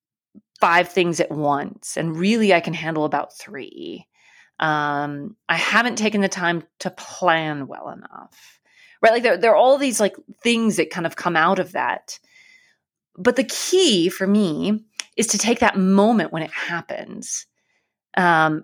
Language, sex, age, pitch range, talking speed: English, female, 30-49, 165-220 Hz, 165 wpm